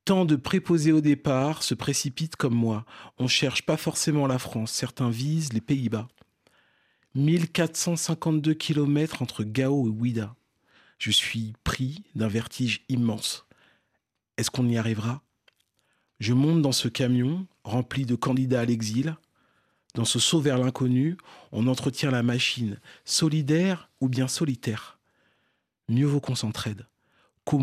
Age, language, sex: 40-59, French, male